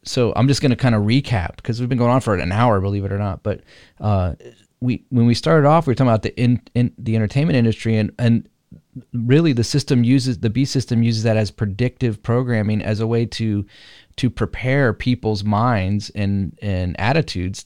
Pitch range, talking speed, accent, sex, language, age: 105-120 Hz, 210 wpm, American, male, English, 30-49